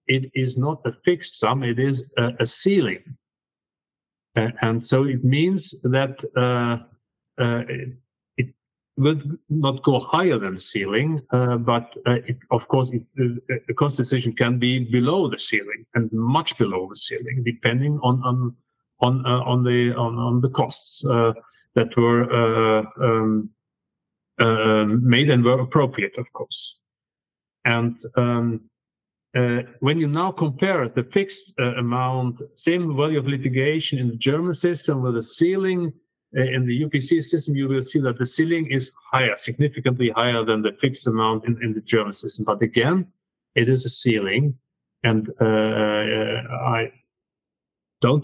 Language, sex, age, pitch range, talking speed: English, male, 50-69, 120-145 Hz, 160 wpm